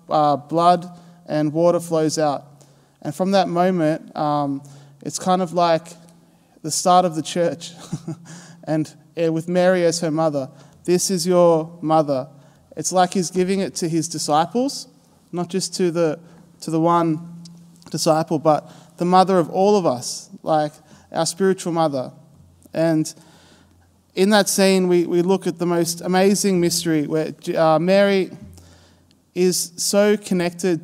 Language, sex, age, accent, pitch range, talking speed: English, male, 20-39, Australian, 150-180 Hz, 145 wpm